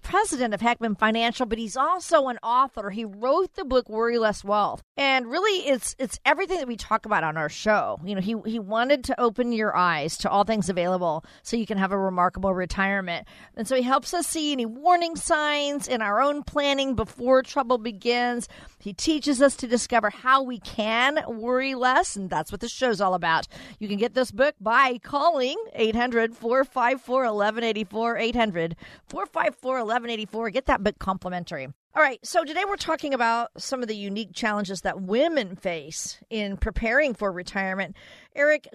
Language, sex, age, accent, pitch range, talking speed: English, female, 40-59, American, 200-265 Hz, 175 wpm